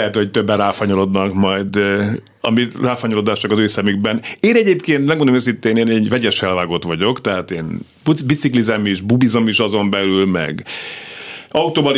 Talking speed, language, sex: 140 wpm, Hungarian, male